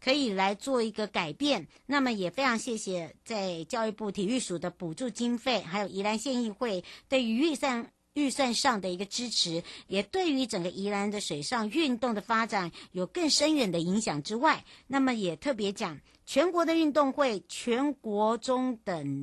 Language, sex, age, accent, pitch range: Chinese, male, 60-79, American, 190-260 Hz